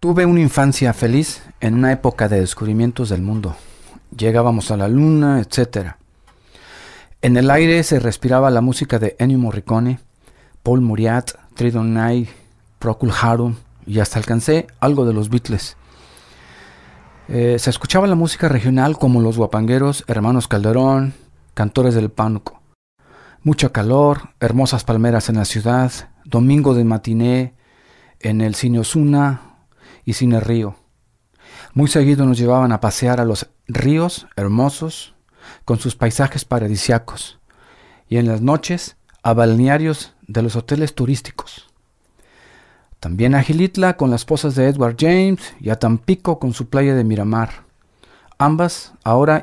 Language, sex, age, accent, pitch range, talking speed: Spanish, male, 40-59, Mexican, 110-140 Hz, 140 wpm